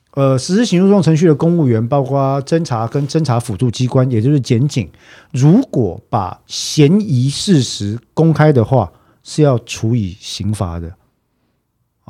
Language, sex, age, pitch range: Chinese, male, 50-69, 110-145 Hz